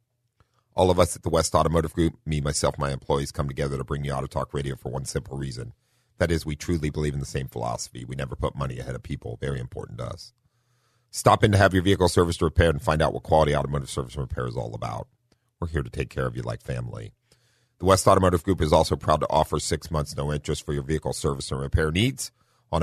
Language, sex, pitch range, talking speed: English, male, 75-100 Hz, 250 wpm